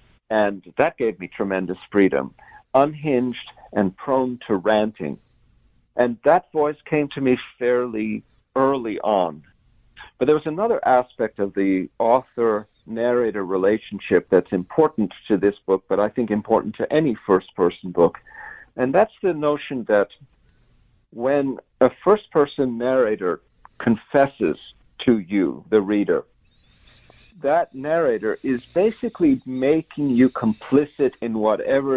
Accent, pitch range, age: American, 105-135 Hz, 50-69